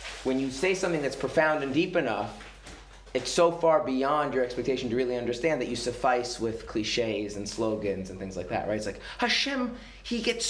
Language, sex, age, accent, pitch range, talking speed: English, male, 30-49, American, 100-145 Hz, 200 wpm